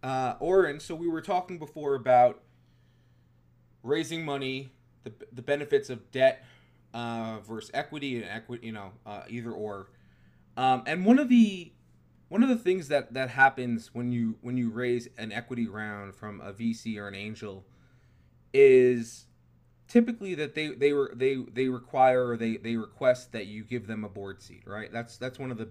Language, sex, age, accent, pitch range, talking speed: English, male, 20-39, American, 100-130 Hz, 180 wpm